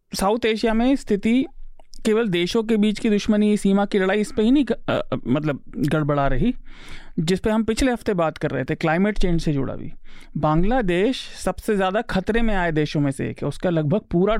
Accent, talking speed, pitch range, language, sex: native, 205 wpm, 160-215 Hz, Hindi, male